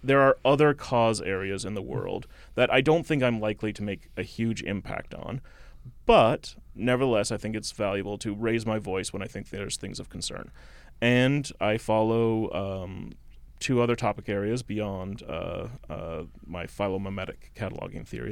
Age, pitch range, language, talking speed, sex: 30-49, 100-125 Hz, English, 165 wpm, male